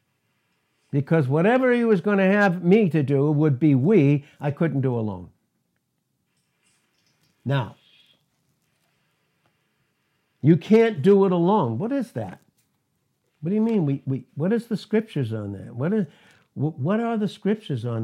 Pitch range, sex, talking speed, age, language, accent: 135-195 Hz, male, 150 wpm, 60-79, English, American